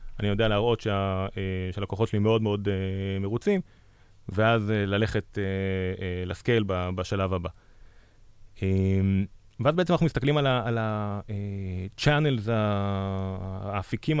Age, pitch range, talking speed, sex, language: 30-49, 95-115 Hz, 90 wpm, male, Hebrew